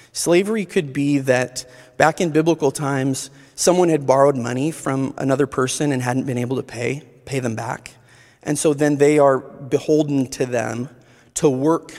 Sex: male